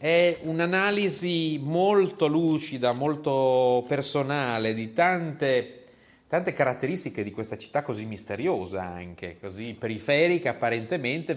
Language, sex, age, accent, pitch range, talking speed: Italian, male, 30-49, native, 120-160 Hz, 100 wpm